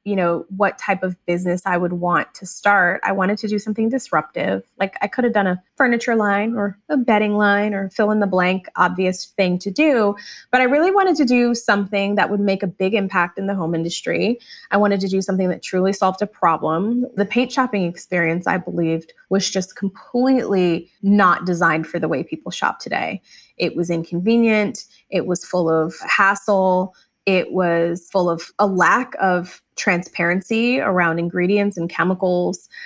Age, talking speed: 20-39, 185 wpm